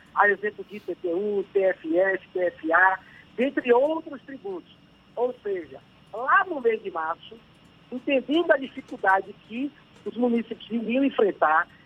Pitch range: 195-260 Hz